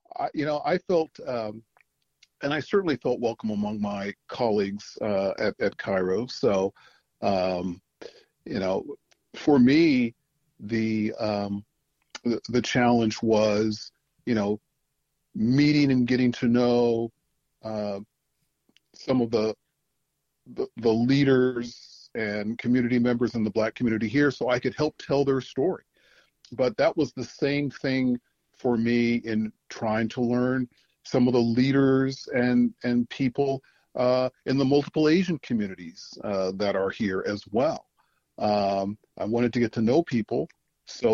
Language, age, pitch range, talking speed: English, 40-59, 110-135 Hz, 145 wpm